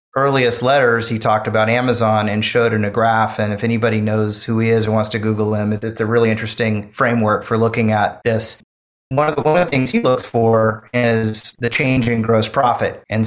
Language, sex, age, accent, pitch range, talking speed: English, male, 30-49, American, 110-125 Hz, 225 wpm